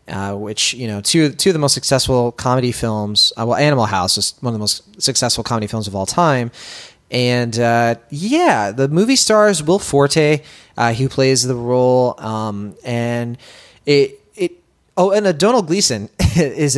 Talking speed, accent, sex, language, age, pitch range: 170 wpm, American, male, English, 20-39, 120-150 Hz